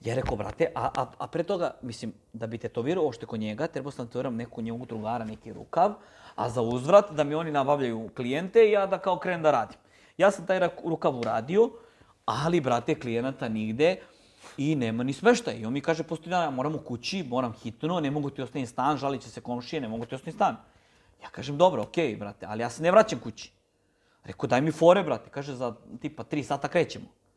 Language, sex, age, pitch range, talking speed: English, male, 30-49, 120-165 Hz, 215 wpm